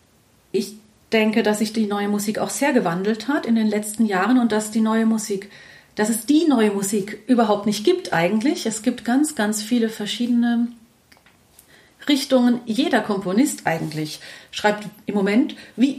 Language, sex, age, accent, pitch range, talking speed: German, female, 40-59, German, 200-240 Hz, 145 wpm